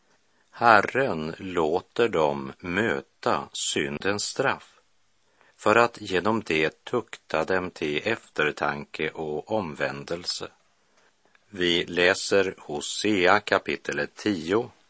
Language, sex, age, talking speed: Swedish, male, 50-69, 85 wpm